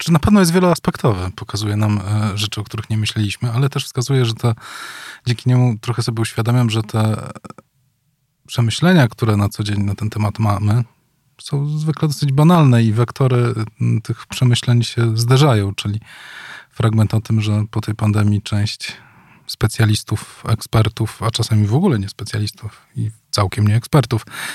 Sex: male